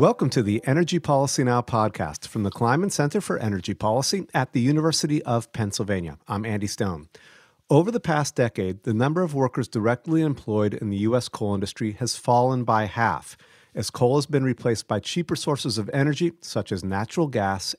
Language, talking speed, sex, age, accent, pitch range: English, 185 wpm, male, 40-59, American, 105-140 Hz